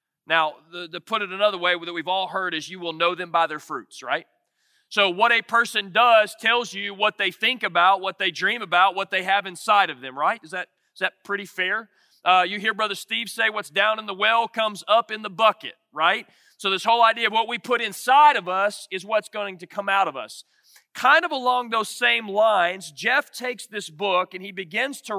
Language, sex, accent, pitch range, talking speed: English, male, American, 185-230 Hz, 235 wpm